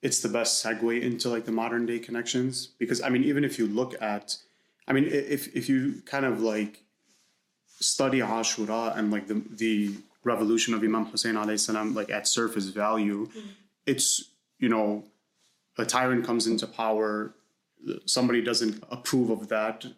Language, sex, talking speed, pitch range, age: English, male, 160 wpm, 105-120 Hz, 30-49